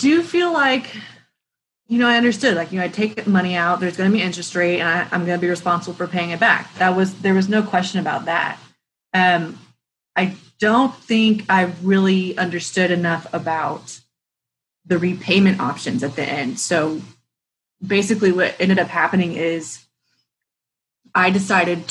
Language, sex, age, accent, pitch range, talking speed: English, female, 20-39, American, 170-195 Hz, 175 wpm